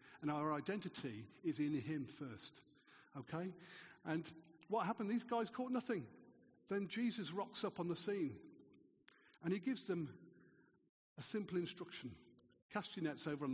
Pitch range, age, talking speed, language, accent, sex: 145-200 Hz, 50-69, 150 wpm, English, British, male